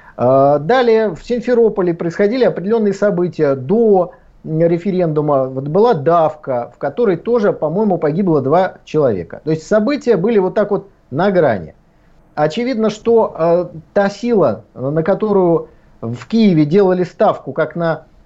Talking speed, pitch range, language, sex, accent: 125 wpm, 155-215 Hz, Russian, male, native